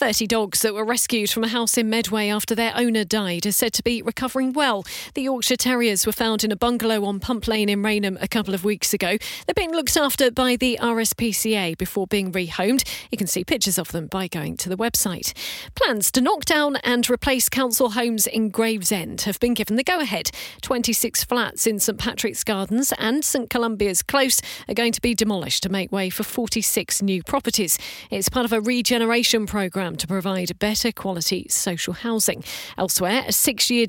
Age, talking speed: 40-59, 195 wpm